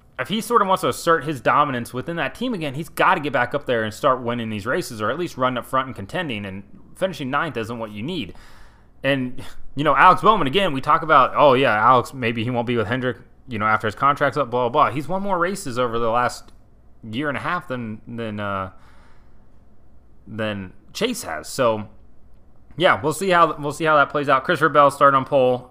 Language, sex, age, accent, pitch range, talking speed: English, male, 20-39, American, 105-150 Hz, 235 wpm